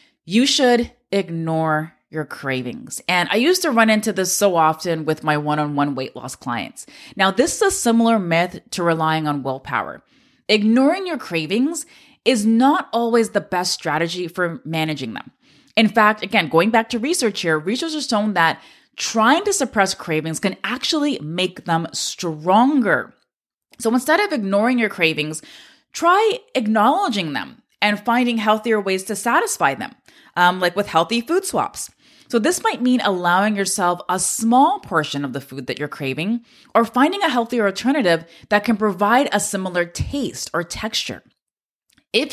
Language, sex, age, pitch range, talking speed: English, female, 20-39, 165-245 Hz, 160 wpm